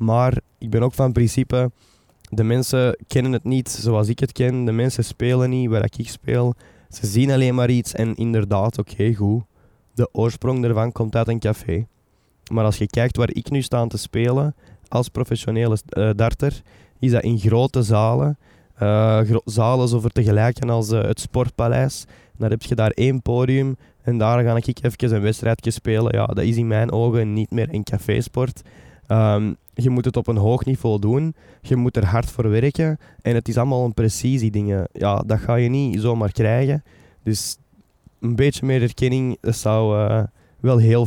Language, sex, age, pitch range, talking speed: Dutch, male, 20-39, 105-125 Hz, 190 wpm